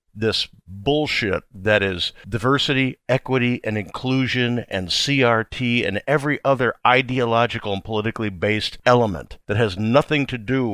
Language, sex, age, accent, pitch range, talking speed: English, male, 50-69, American, 110-140 Hz, 130 wpm